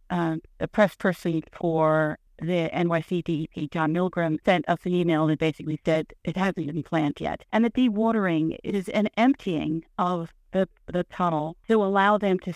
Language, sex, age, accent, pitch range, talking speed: English, female, 50-69, American, 165-210 Hz, 165 wpm